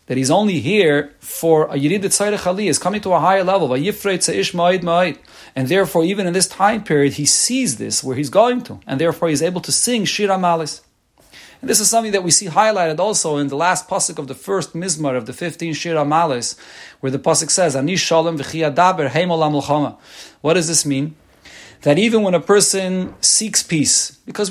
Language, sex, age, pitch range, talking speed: English, male, 40-59, 145-190 Hz, 185 wpm